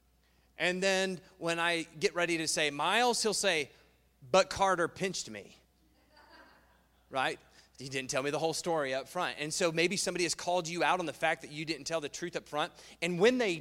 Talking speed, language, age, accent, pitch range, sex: 205 wpm, English, 30-49, American, 145-180 Hz, male